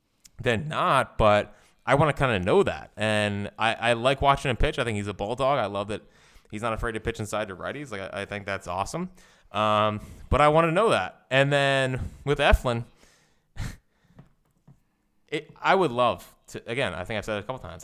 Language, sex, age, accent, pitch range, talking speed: English, male, 20-39, American, 105-130 Hz, 215 wpm